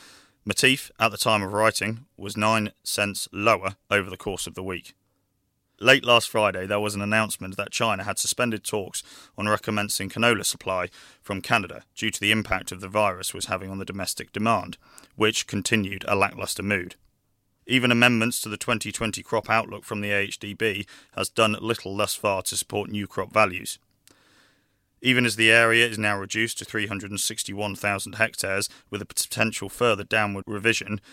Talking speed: 170 wpm